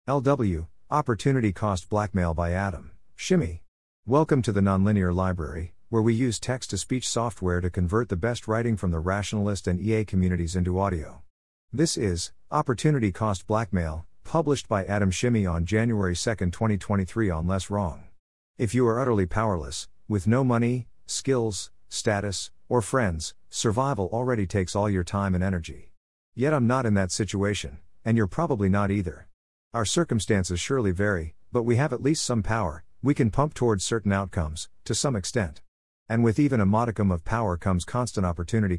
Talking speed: 165 wpm